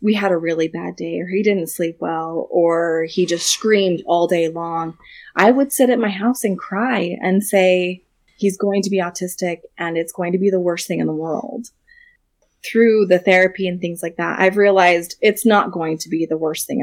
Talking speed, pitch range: 220 wpm, 170-220 Hz